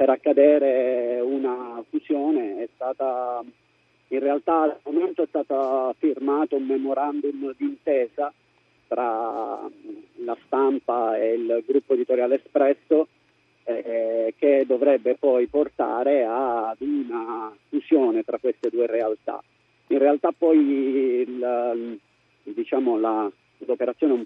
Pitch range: 120-155 Hz